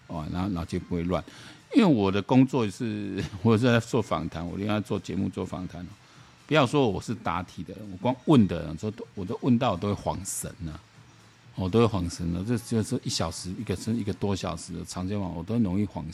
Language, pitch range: Chinese, 90-115 Hz